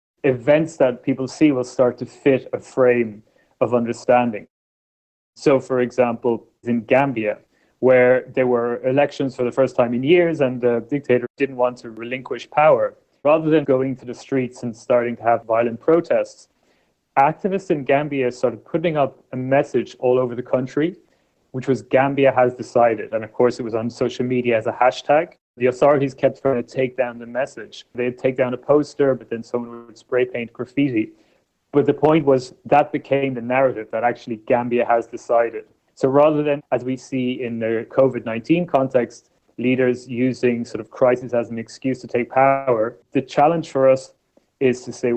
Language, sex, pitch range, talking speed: English, male, 120-135 Hz, 180 wpm